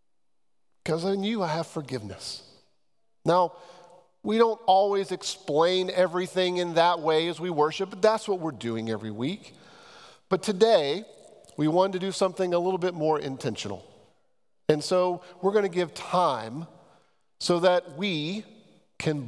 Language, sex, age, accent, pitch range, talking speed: English, male, 40-59, American, 145-190 Hz, 145 wpm